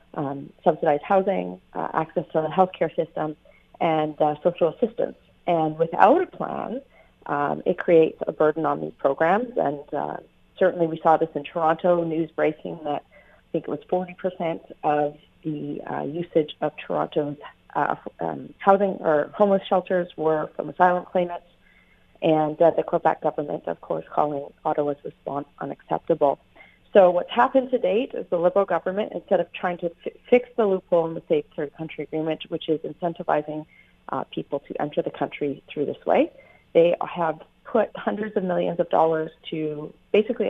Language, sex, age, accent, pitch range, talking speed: English, female, 40-59, American, 155-180 Hz, 165 wpm